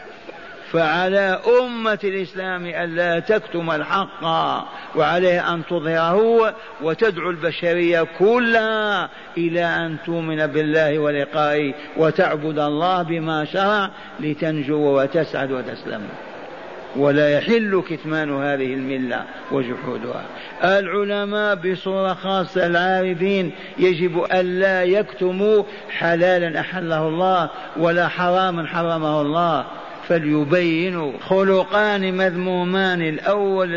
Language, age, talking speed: Arabic, 50-69, 85 wpm